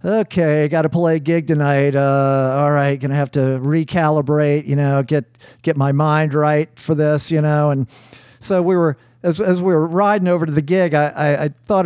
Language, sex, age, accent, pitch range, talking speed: English, male, 50-69, American, 135-165 Hz, 215 wpm